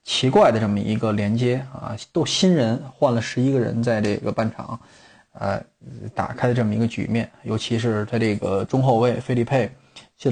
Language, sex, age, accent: Chinese, male, 20-39, native